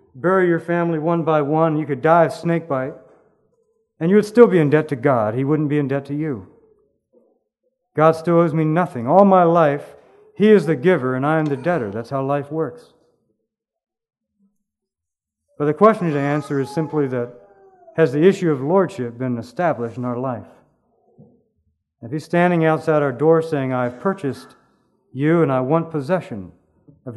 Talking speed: 180 wpm